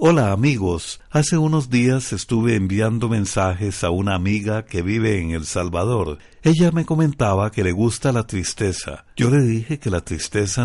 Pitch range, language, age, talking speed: 90-125 Hz, Spanish, 60-79, 170 wpm